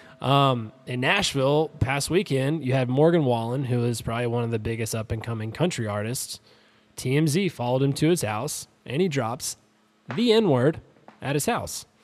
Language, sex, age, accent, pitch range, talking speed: English, male, 20-39, American, 110-140 Hz, 165 wpm